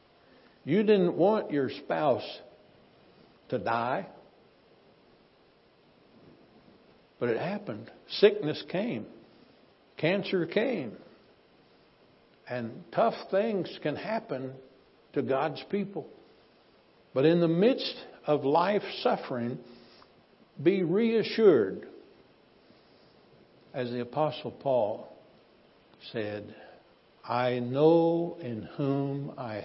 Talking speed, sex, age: 85 wpm, male, 60-79